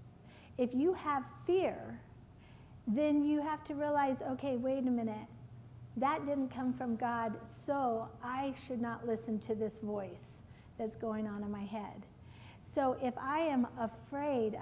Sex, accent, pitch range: female, American, 240-295 Hz